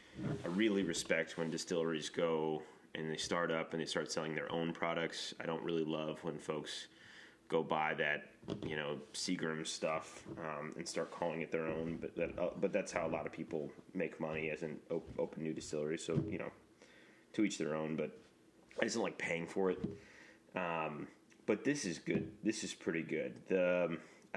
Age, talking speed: 30-49, 195 wpm